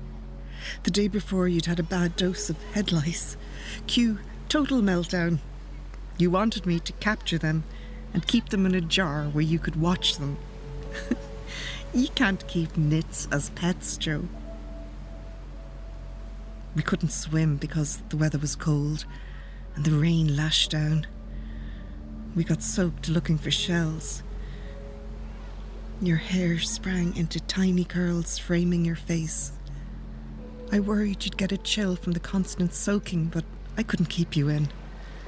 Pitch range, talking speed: 145-175 Hz, 140 wpm